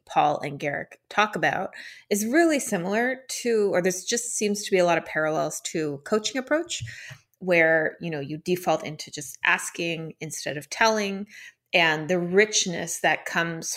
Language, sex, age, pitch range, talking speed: English, female, 30-49, 160-205 Hz, 165 wpm